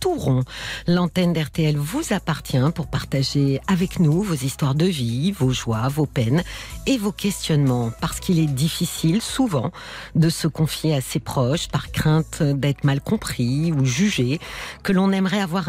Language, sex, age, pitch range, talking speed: French, female, 50-69, 135-200 Hz, 165 wpm